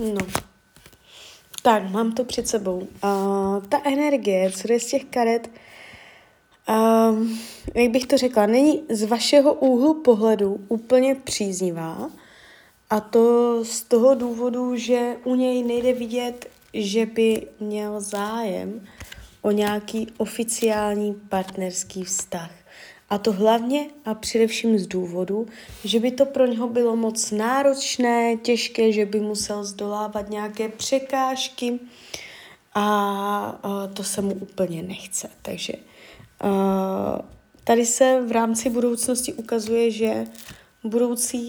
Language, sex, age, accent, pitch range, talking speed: Czech, female, 20-39, native, 205-240 Hz, 115 wpm